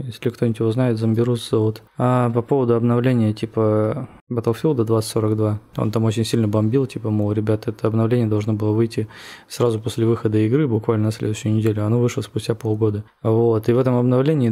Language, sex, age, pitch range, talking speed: Russian, male, 20-39, 110-130 Hz, 180 wpm